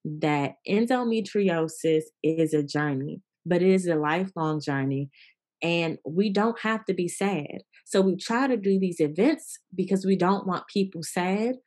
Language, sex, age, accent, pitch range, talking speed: English, female, 20-39, American, 155-195 Hz, 160 wpm